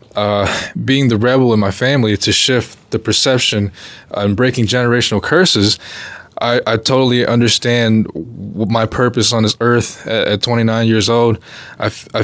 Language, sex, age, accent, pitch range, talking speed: English, male, 20-39, American, 110-125 Hz, 155 wpm